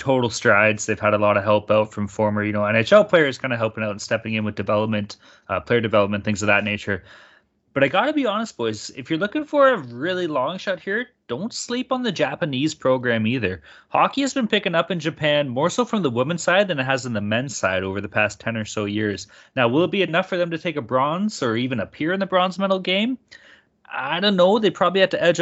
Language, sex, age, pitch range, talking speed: English, male, 20-39, 110-180 Hz, 255 wpm